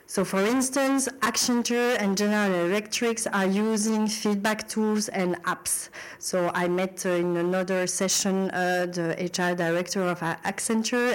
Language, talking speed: French, 135 wpm